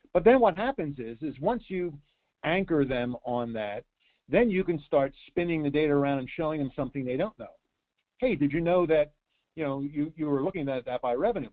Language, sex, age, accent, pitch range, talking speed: English, male, 50-69, American, 120-155 Hz, 220 wpm